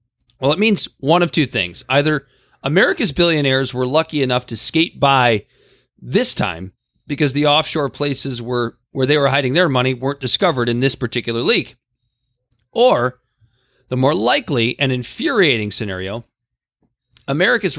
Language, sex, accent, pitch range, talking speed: English, male, American, 120-150 Hz, 140 wpm